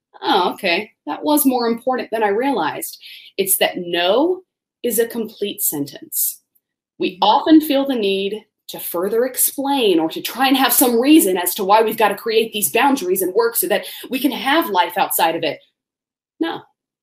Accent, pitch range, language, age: American, 180-275 Hz, English, 30-49